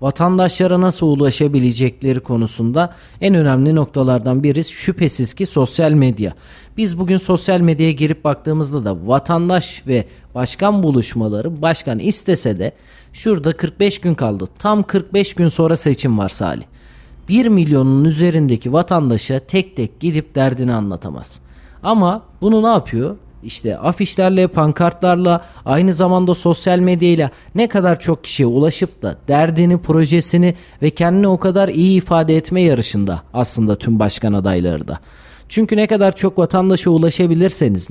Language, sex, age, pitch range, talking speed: Turkish, male, 40-59, 130-185 Hz, 135 wpm